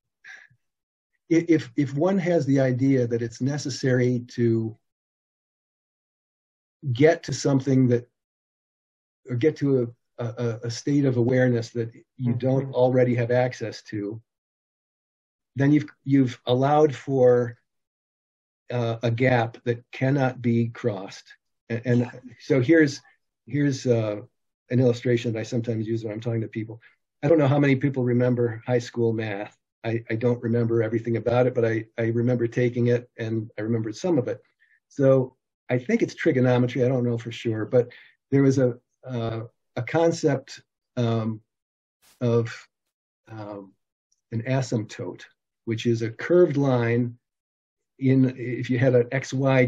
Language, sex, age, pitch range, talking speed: English, male, 50-69, 115-130 Hz, 145 wpm